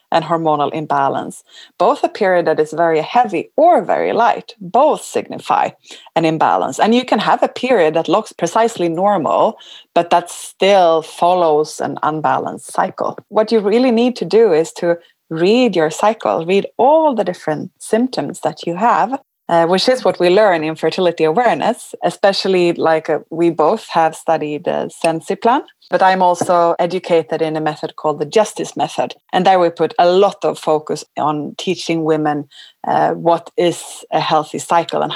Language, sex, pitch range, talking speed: English, female, 170-230 Hz, 170 wpm